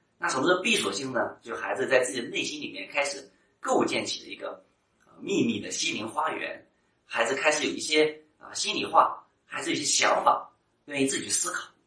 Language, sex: Chinese, male